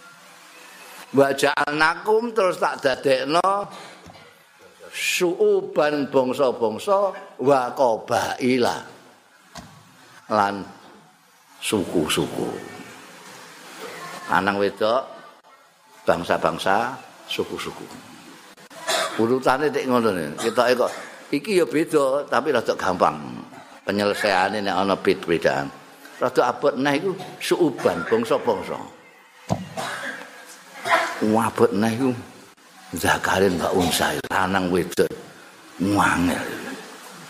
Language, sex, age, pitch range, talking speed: Indonesian, male, 50-69, 110-155 Hz, 70 wpm